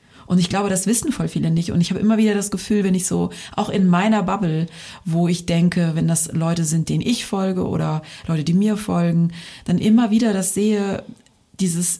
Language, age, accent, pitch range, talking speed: German, 30-49, German, 160-195 Hz, 215 wpm